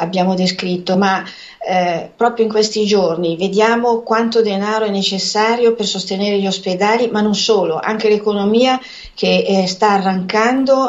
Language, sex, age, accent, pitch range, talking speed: Italian, female, 40-59, native, 185-220 Hz, 145 wpm